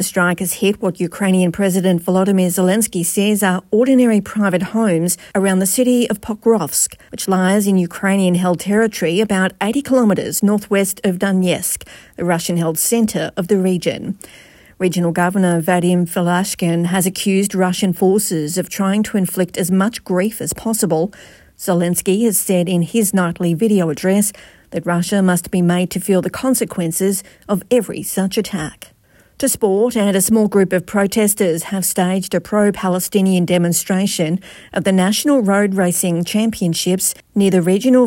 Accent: Australian